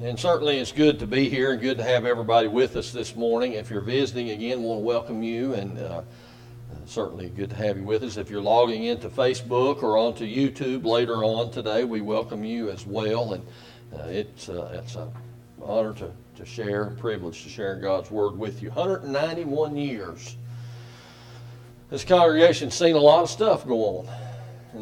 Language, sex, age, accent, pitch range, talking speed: English, male, 40-59, American, 110-125 Hz, 190 wpm